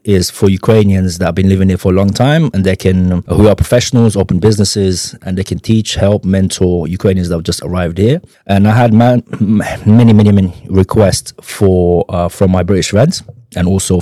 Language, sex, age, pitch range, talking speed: Ukrainian, male, 20-39, 90-110 Hz, 205 wpm